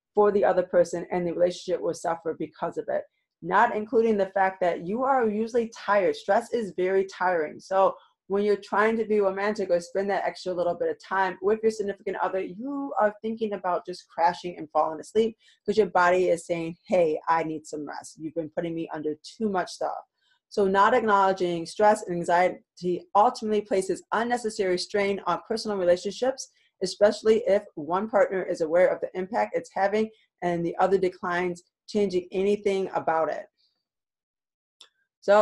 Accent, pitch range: American, 180-220 Hz